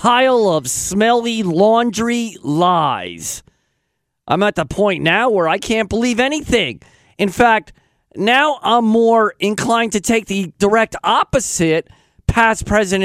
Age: 40-59